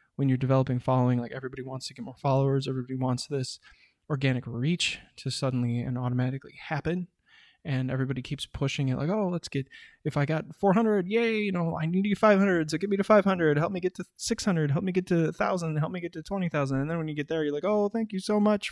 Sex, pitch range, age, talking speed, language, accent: male, 135-165 Hz, 20-39, 240 wpm, English, American